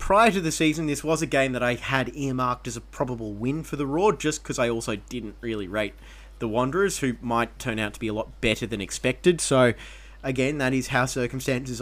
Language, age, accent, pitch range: English, 30-49, Australian, 115-145 Hz